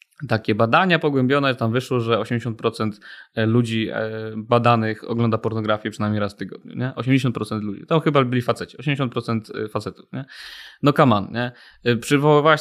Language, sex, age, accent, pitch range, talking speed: Polish, male, 20-39, native, 115-145 Hz, 145 wpm